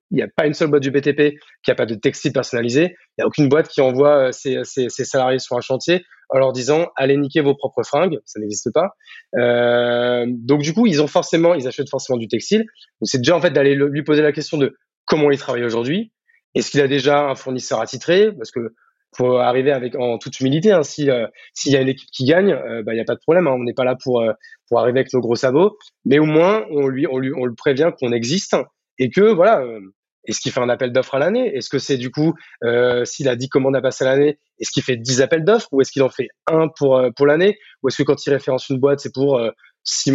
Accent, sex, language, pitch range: French, male, French, 130-165 Hz